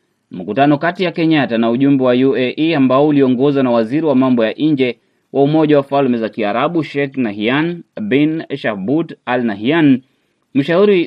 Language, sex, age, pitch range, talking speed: Swahili, male, 30-49, 125-155 Hz, 155 wpm